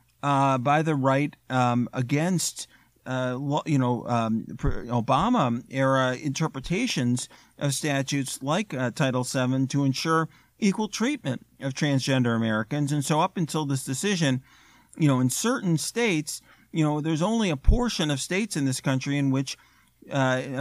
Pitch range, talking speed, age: 135-175 Hz, 150 wpm, 40-59